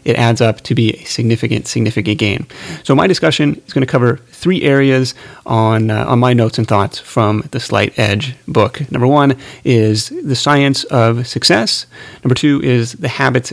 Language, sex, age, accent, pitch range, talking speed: English, male, 30-49, American, 115-145 Hz, 185 wpm